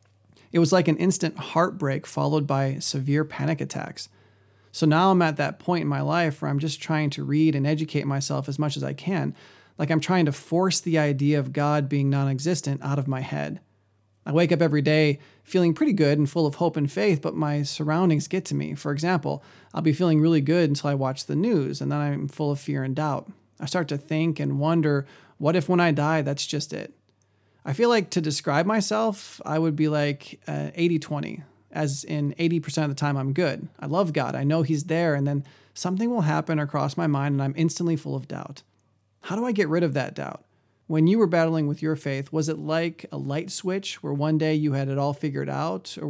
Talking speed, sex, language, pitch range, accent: 230 wpm, male, English, 140-165 Hz, American